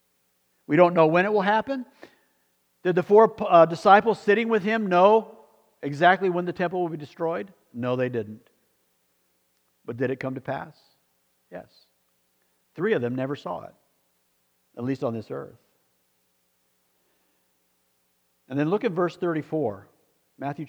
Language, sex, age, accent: English, male, 50-69, American